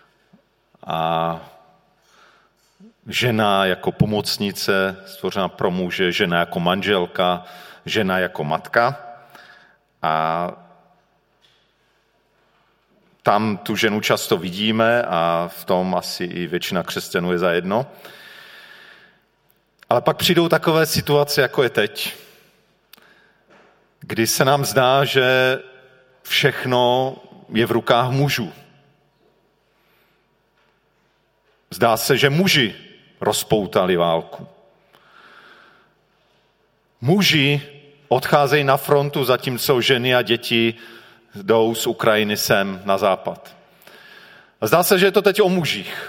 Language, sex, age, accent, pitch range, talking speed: Czech, male, 40-59, native, 110-140 Hz, 95 wpm